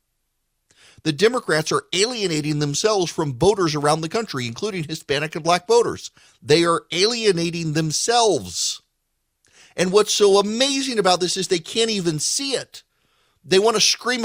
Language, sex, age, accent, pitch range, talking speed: English, male, 40-59, American, 155-210 Hz, 145 wpm